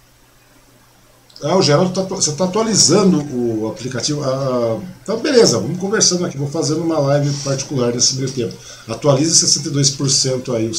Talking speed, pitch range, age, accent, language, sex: 155 wpm, 125-170 Hz, 50-69, Brazilian, Portuguese, male